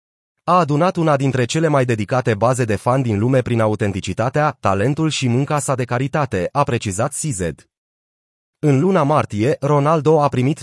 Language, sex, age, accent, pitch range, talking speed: Romanian, male, 30-49, native, 115-150 Hz, 165 wpm